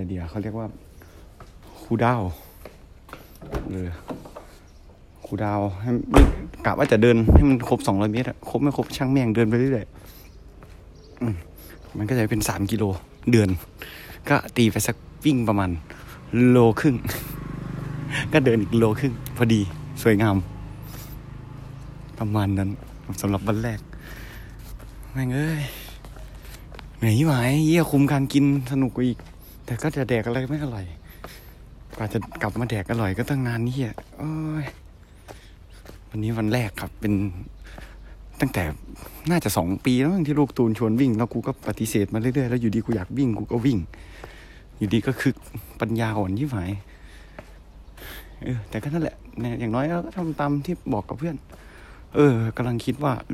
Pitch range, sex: 100-135 Hz, male